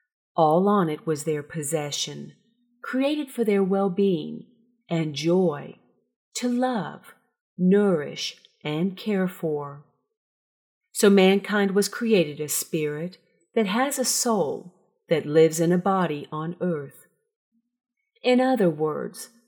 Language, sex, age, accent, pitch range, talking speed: English, female, 40-59, American, 155-220 Hz, 115 wpm